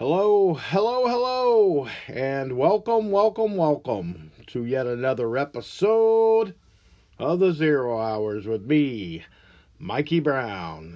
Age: 50-69